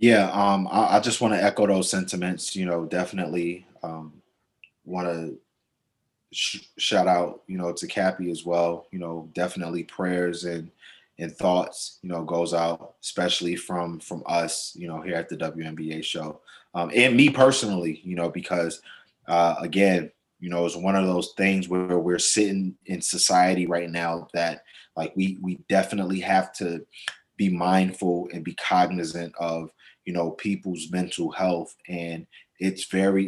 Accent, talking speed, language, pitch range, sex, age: American, 160 wpm, English, 85-95 Hz, male, 20-39